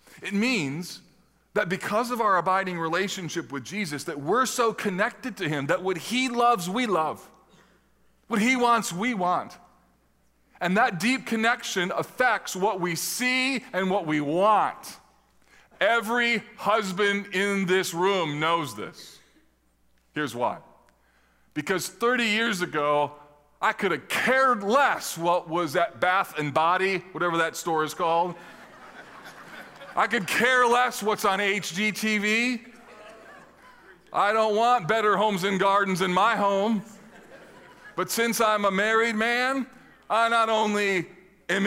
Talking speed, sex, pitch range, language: 135 wpm, male, 175-235 Hz, English